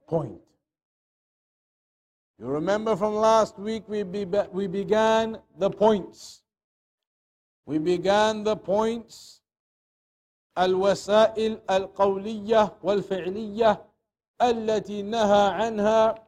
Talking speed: 65 wpm